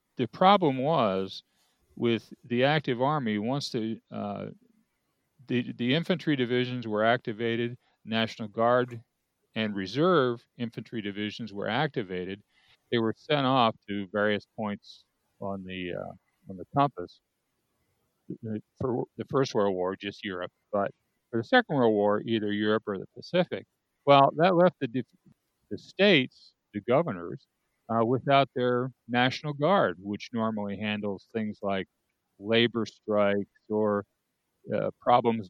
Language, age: English, 50-69